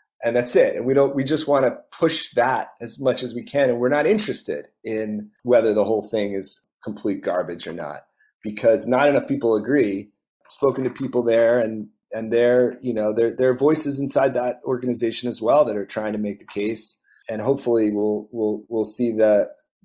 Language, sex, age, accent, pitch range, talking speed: English, male, 30-49, American, 105-125 Hz, 210 wpm